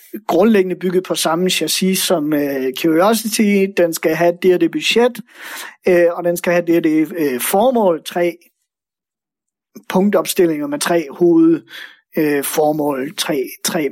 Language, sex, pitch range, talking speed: Danish, male, 165-220 Hz, 115 wpm